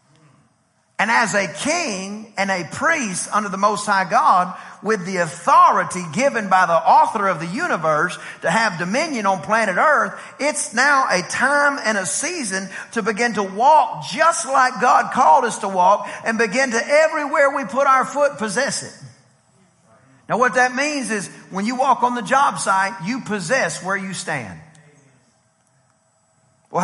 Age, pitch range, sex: 40-59, 190-260 Hz, male